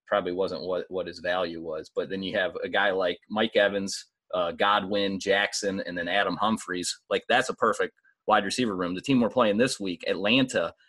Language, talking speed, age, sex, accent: English, 205 wpm, 30-49, male, American